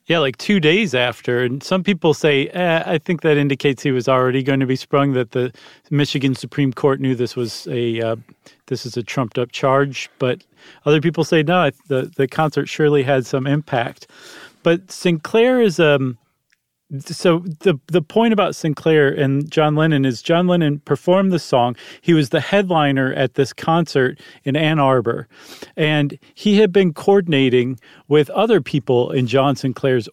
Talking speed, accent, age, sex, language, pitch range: 175 wpm, American, 40-59, male, English, 135-165 Hz